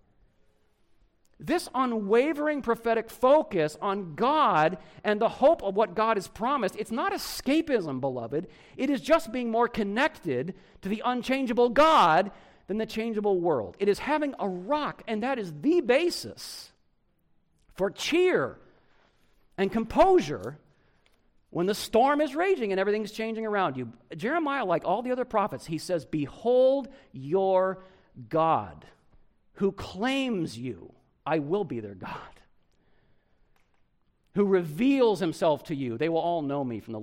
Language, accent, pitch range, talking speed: English, American, 150-250 Hz, 140 wpm